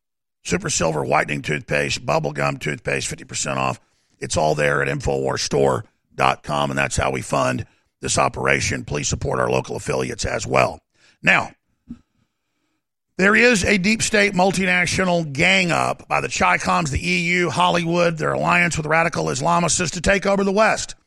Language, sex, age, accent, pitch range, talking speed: English, male, 50-69, American, 150-195 Hz, 150 wpm